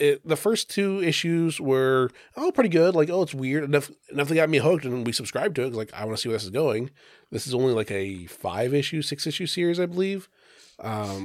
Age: 20-39